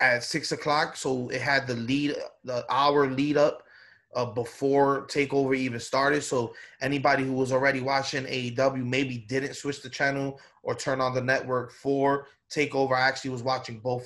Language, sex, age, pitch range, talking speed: English, male, 20-39, 135-165 Hz, 165 wpm